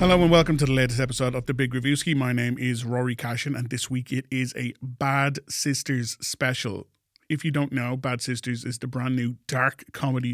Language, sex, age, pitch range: English, male, 30-49, 115-135 Hz